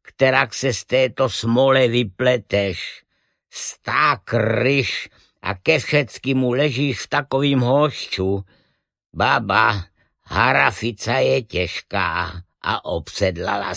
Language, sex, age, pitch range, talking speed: Czech, male, 50-69, 110-135 Hz, 90 wpm